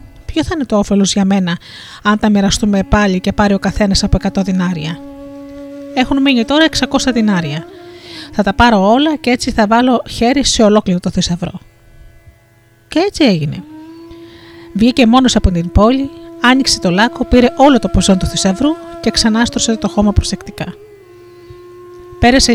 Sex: female